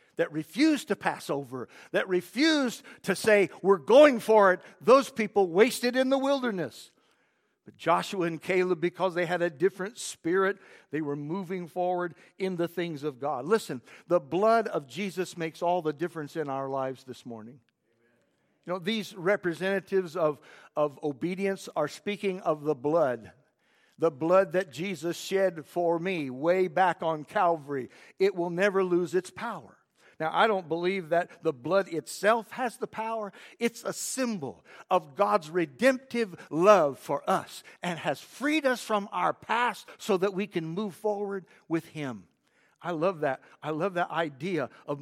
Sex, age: male, 60-79